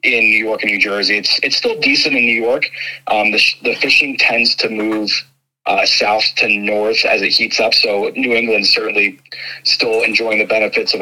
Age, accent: 30-49, American